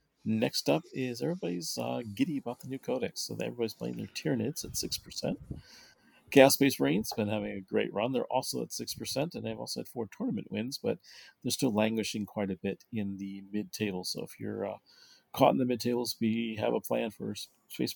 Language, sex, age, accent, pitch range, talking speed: English, male, 40-59, American, 105-135 Hz, 200 wpm